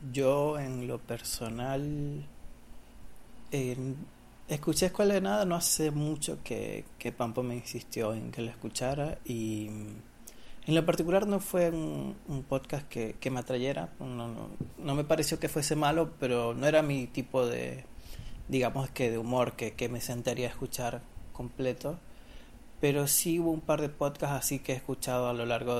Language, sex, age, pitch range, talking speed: Spanish, male, 30-49, 120-150 Hz, 165 wpm